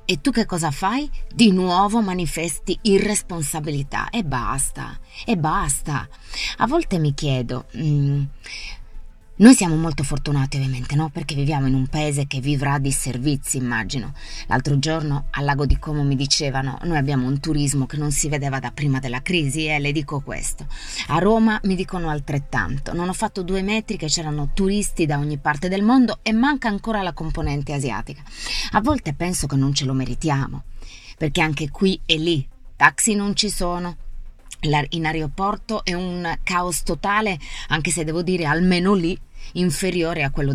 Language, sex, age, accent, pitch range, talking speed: Italian, female, 20-39, native, 135-175 Hz, 170 wpm